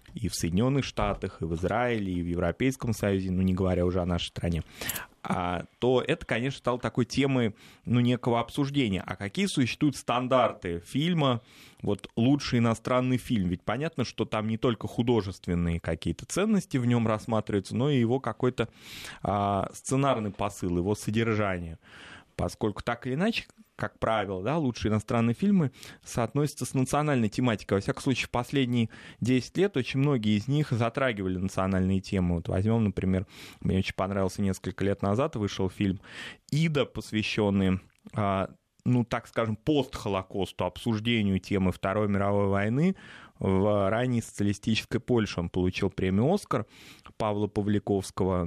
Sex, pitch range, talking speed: male, 95-125 Hz, 145 wpm